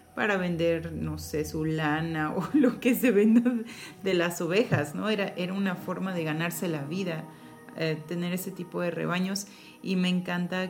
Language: Spanish